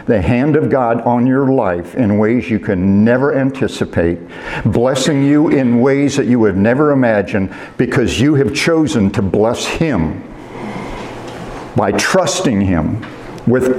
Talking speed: 145 wpm